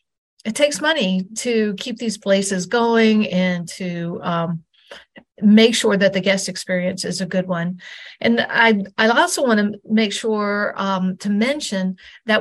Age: 50-69